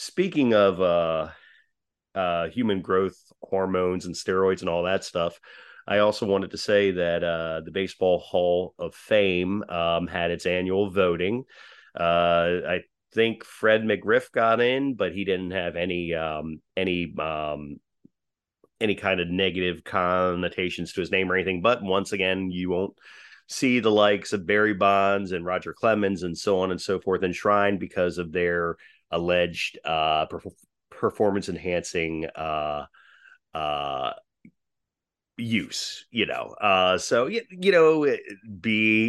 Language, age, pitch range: English, 30-49, 85-100 Hz